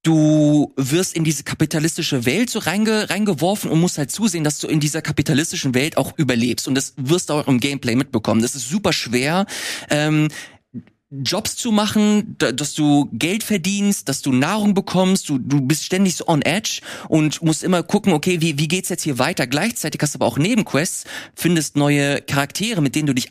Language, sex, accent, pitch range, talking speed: German, male, German, 140-180 Hz, 195 wpm